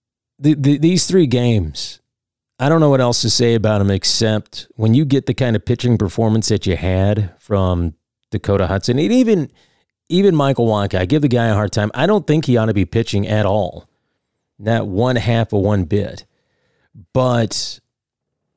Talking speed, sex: 185 wpm, male